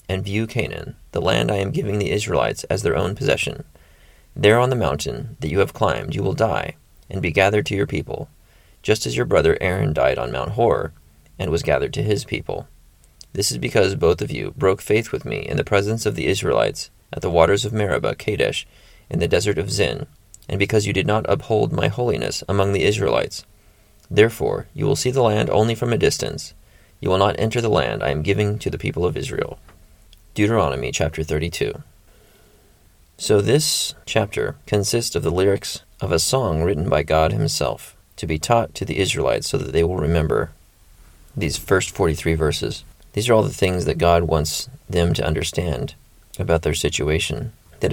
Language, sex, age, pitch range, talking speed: English, male, 30-49, 85-110 Hz, 195 wpm